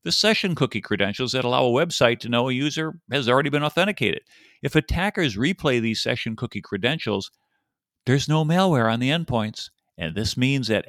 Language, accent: English, American